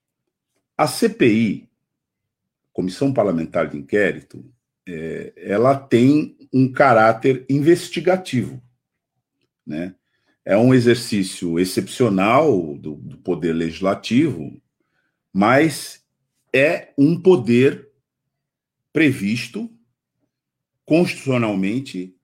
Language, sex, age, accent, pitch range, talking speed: Portuguese, male, 50-69, Brazilian, 115-185 Hz, 70 wpm